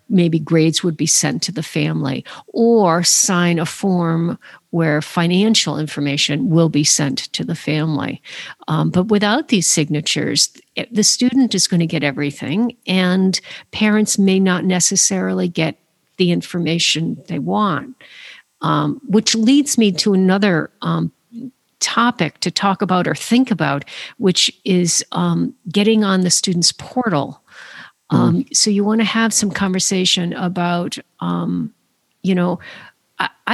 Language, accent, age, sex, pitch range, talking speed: English, American, 50-69, female, 160-200 Hz, 140 wpm